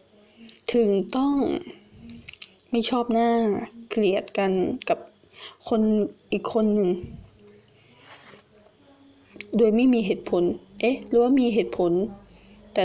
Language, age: Thai, 20-39